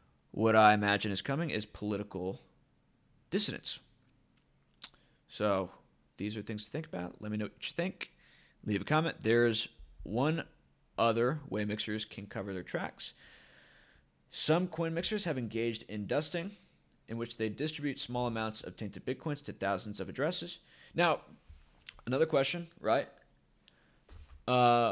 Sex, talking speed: male, 140 wpm